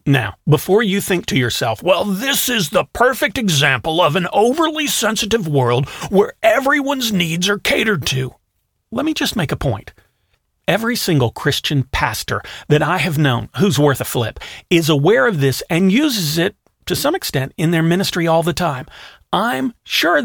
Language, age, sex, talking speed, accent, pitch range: English, 40-59, male, 175 wpm, American, 130-185 Hz